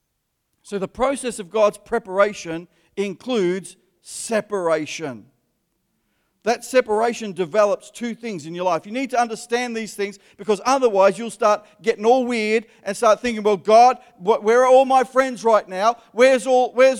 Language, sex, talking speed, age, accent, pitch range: English, male, 150 wpm, 40-59, Australian, 200-240 Hz